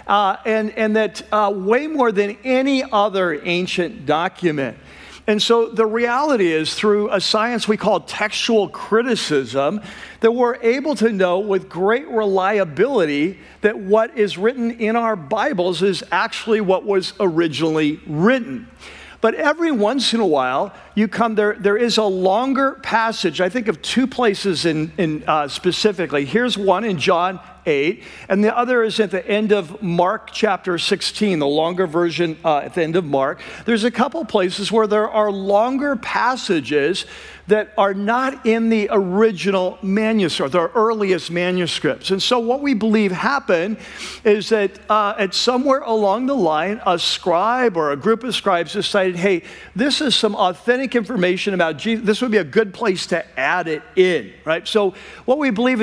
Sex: male